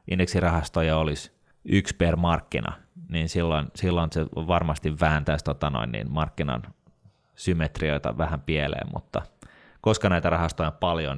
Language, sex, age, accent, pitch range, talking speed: Finnish, male, 30-49, native, 80-95 Hz, 130 wpm